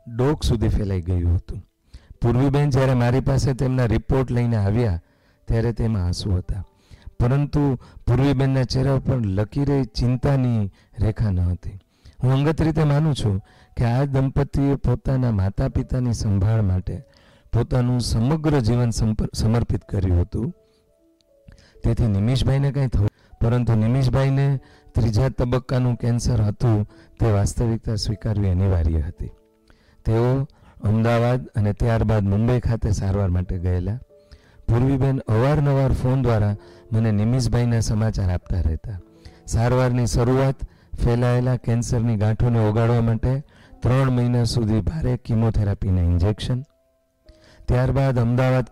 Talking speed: 105 wpm